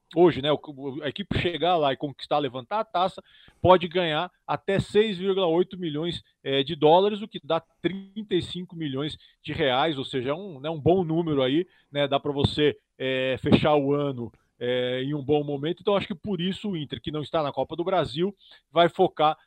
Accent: Brazilian